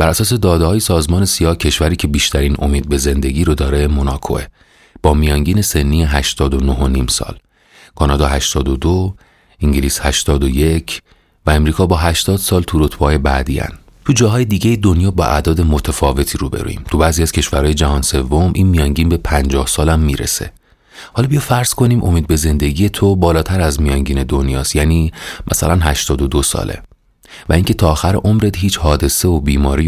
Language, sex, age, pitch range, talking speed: Persian, male, 30-49, 70-90 Hz, 155 wpm